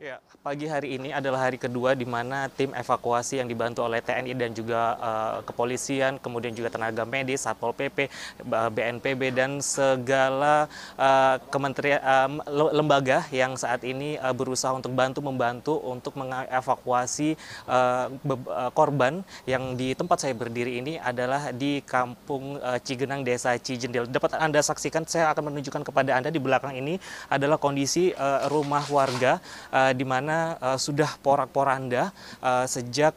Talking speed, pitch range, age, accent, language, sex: 145 wpm, 125-145 Hz, 20-39, native, Indonesian, male